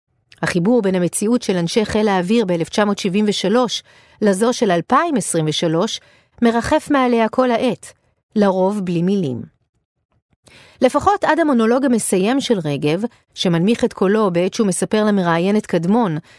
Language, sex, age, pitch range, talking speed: Hebrew, female, 40-59, 185-245 Hz, 115 wpm